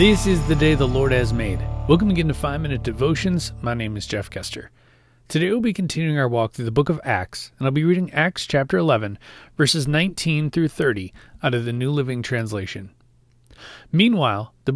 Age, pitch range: 30-49, 120-160 Hz